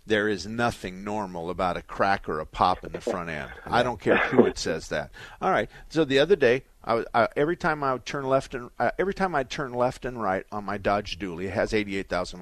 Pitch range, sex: 100-140 Hz, male